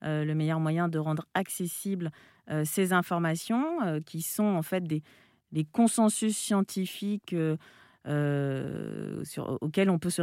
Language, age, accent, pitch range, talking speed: French, 40-59, French, 155-200 Hz, 145 wpm